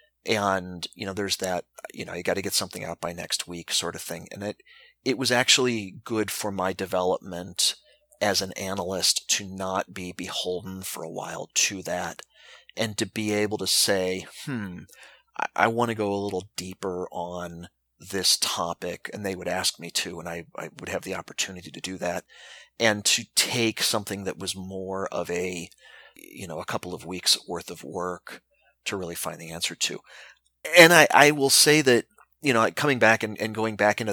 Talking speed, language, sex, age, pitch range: 200 wpm, English, male, 30-49, 95-115 Hz